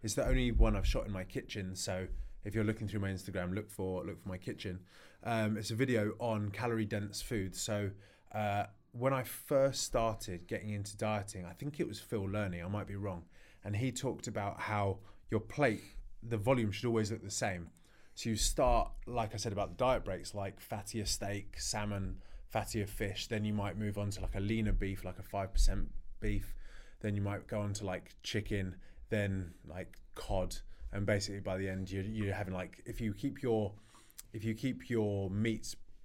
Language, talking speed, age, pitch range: English, 205 wpm, 20-39, 95-110 Hz